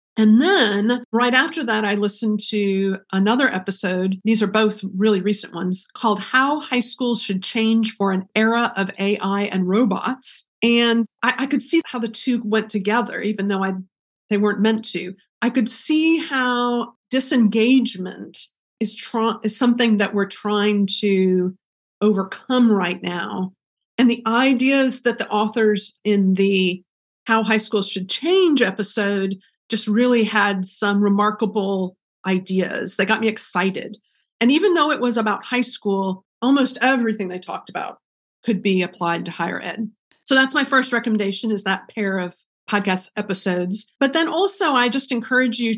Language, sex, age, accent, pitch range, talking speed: English, female, 40-59, American, 195-240 Hz, 160 wpm